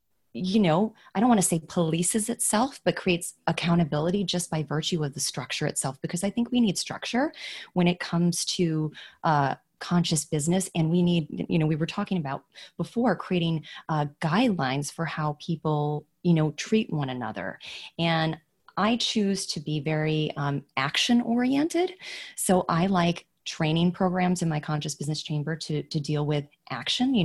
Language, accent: English, American